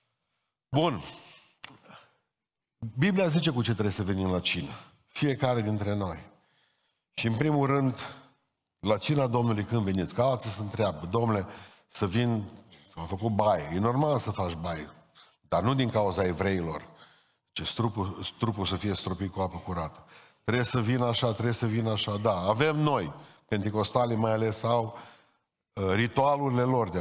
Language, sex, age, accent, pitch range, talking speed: Romanian, male, 50-69, native, 100-135 Hz, 150 wpm